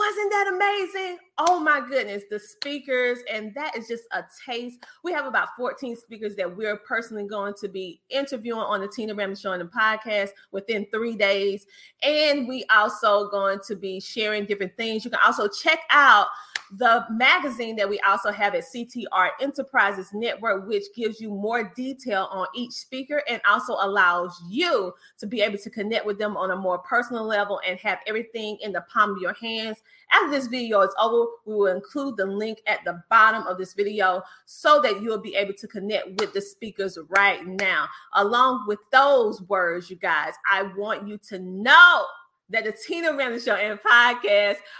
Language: English